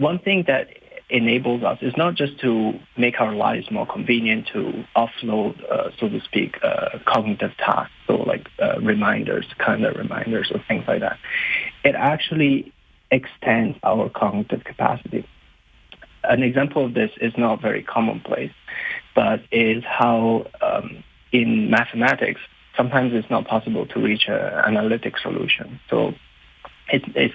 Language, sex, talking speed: English, male, 145 wpm